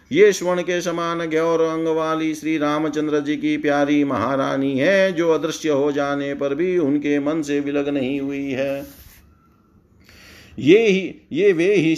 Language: Hindi